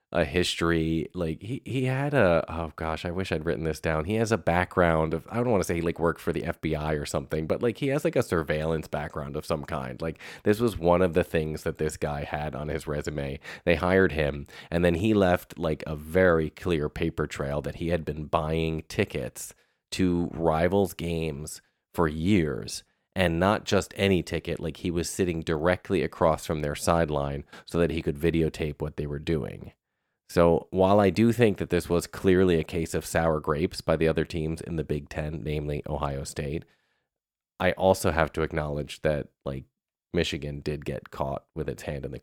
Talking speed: 205 wpm